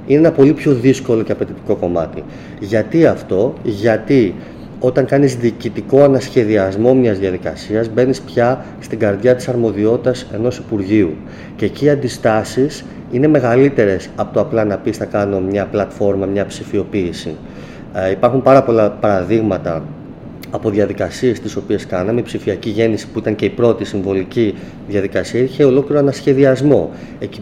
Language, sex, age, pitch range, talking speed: Greek, male, 30-49, 105-135 Hz, 140 wpm